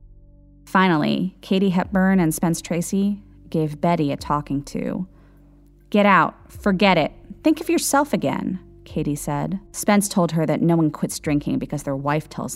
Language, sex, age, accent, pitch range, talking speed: English, female, 30-49, American, 145-180 Hz, 155 wpm